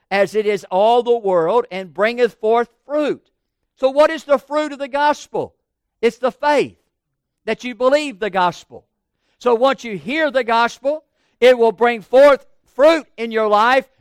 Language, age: English, 50-69